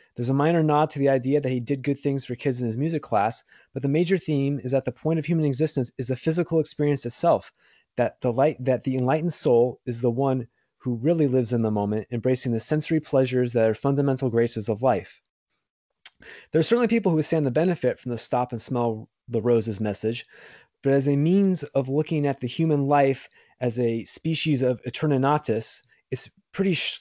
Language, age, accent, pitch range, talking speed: English, 20-39, American, 120-150 Hz, 205 wpm